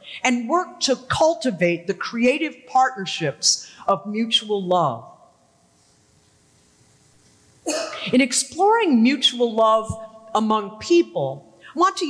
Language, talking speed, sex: English, 95 wpm, female